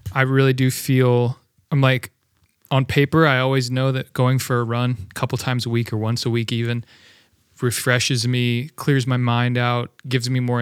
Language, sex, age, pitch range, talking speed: English, male, 30-49, 115-135 Hz, 200 wpm